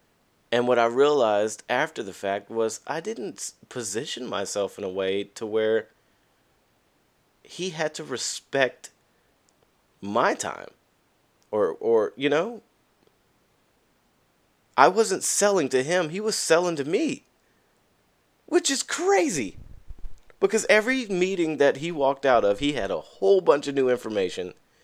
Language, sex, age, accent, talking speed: English, male, 30-49, American, 135 wpm